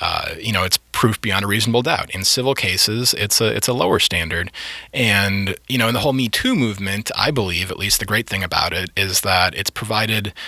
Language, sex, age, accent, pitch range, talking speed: English, male, 30-49, American, 95-115 Hz, 230 wpm